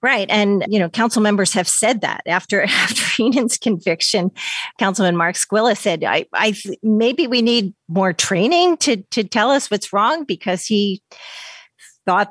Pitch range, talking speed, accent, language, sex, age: 170-210 Hz, 165 wpm, American, English, female, 40-59